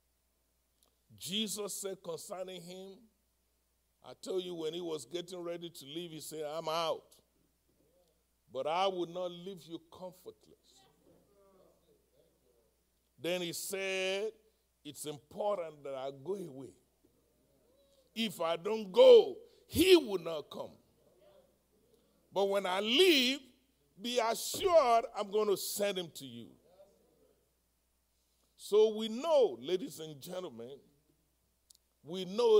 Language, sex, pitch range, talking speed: English, male, 155-245 Hz, 115 wpm